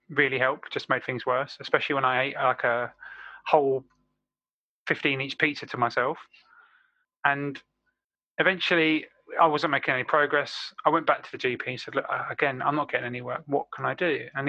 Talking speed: 180 wpm